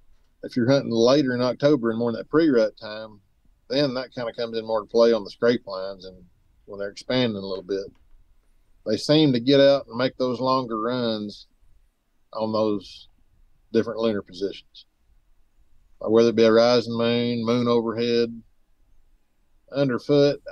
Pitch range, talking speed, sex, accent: 100-125 Hz, 165 wpm, male, American